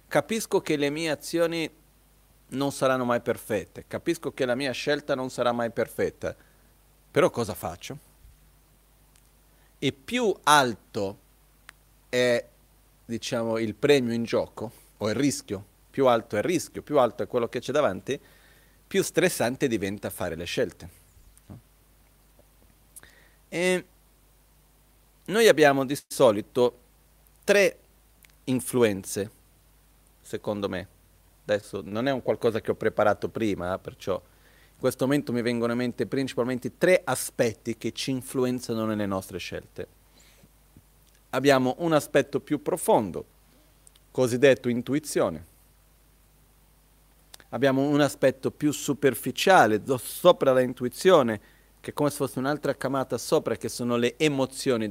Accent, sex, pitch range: native, male, 105-140 Hz